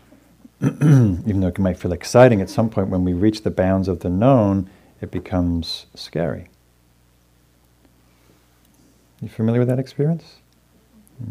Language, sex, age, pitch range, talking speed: English, male, 40-59, 85-105 Hz, 140 wpm